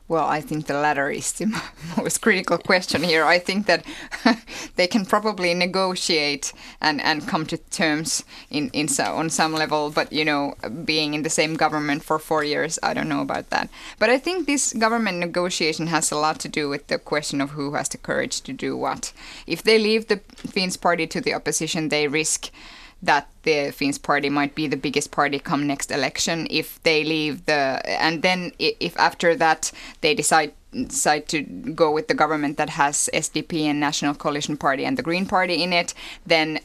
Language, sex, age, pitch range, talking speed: Finnish, female, 10-29, 150-185 Hz, 200 wpm